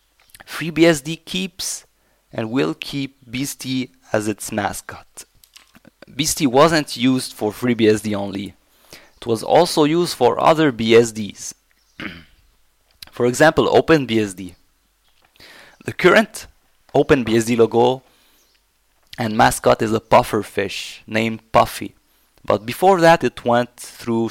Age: 30-49